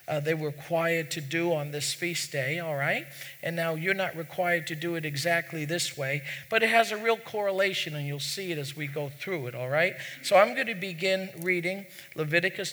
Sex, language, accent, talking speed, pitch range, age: male, English, American, 220 wpm, 145-185 Hz, 50-69